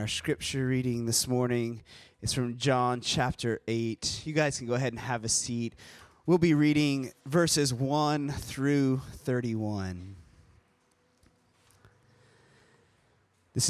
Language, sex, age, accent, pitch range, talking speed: English, male, 20-39, American, 110-145 Hz, 120 wpm